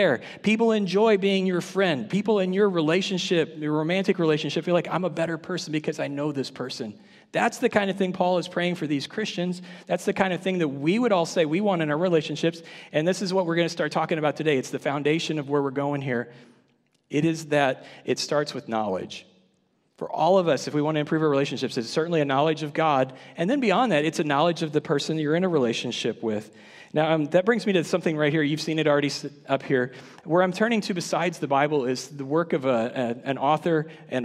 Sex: male